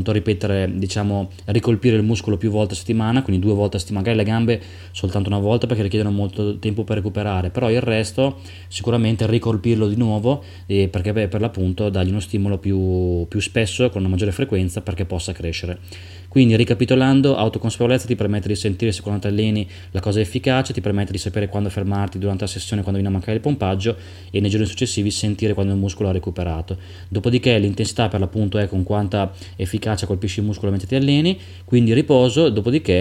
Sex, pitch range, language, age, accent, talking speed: male, 95-110 Hz, Italian, 20-39, native, 195 wpm